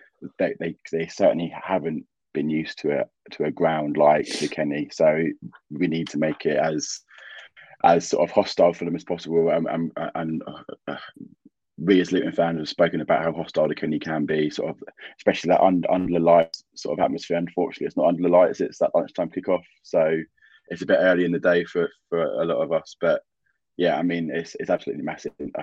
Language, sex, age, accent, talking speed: English, male, 20-39, British, 210 wpm